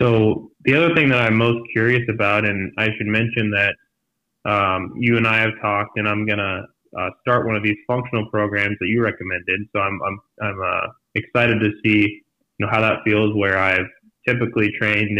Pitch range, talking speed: 100-115 Hz, 200 wpm